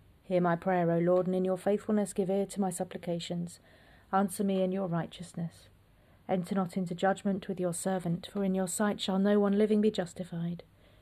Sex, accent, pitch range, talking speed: female, British, 170-195 Hz, 195 wpm